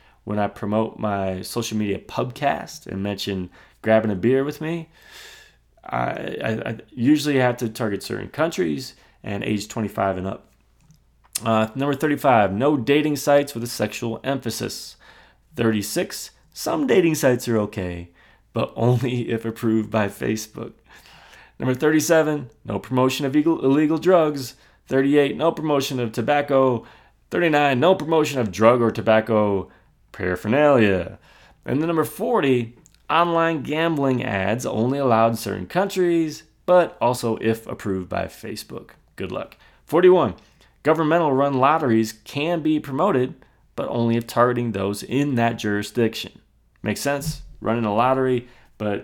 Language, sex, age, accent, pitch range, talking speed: English, male, 30-49, American, 105-145 Hz, 135 wpm